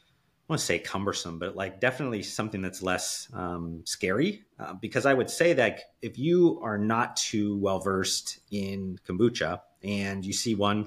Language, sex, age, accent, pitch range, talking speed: English, male, 30-49, American, 90-110 Hz, 175 wpm